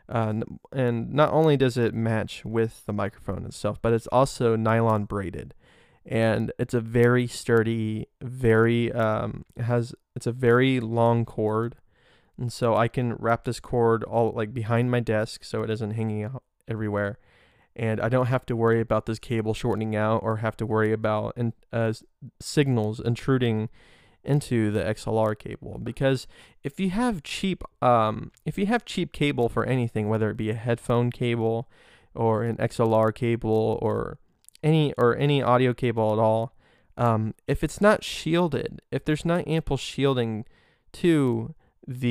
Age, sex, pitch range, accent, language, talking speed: 20-39, male, 110-130 Hz, American, English, 160 wpm